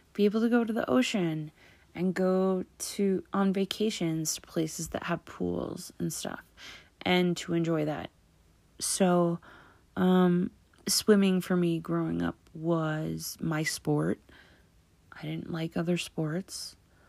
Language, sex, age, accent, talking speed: English, female, 30-49, American, 135 wpm